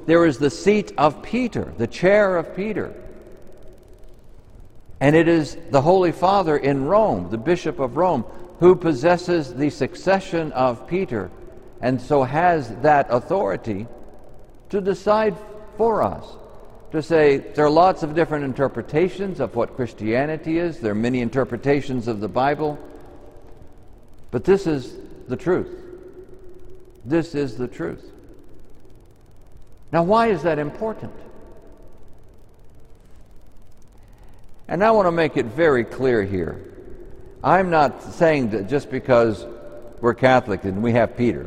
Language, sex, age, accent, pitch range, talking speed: English, male, 60-79, American, 115-170 Hz, 130 wpm